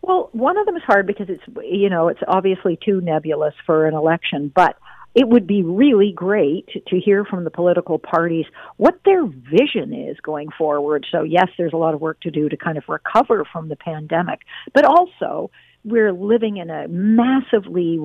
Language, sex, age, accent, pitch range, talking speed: English, female, 50-69, American, 160-205 Hz, 195 wpm